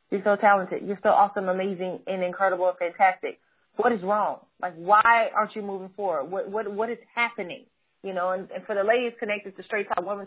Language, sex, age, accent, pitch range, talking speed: English, female, 30-49, American, 190-260 Hz, 215 wpm